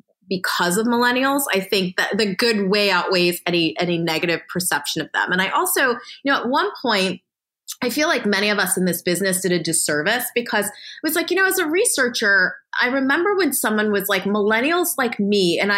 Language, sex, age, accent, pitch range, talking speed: English, female, 20-39, American, 185-245 Hz, 210 wpm